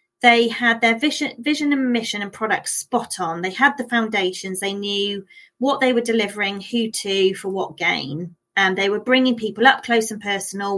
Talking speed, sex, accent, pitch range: 195 wpm, female, British, 200-245 Hz